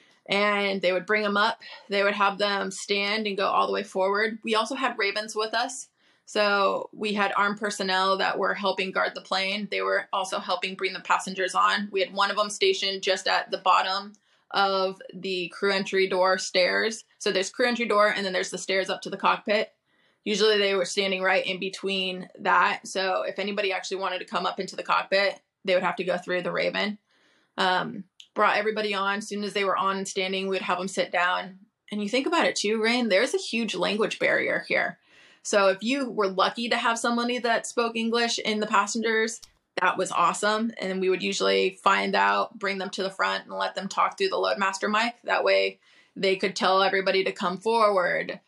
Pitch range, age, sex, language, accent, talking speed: 190-215 Hz, 20-39, female, English, American, 215 wpm